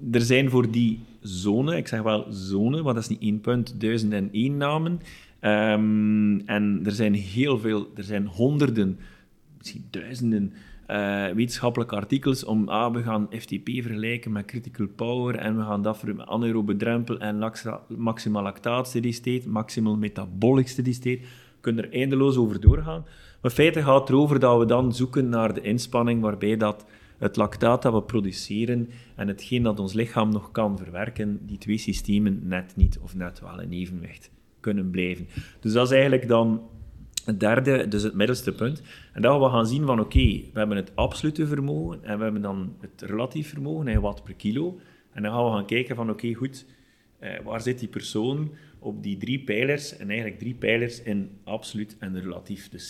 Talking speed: 185 wpm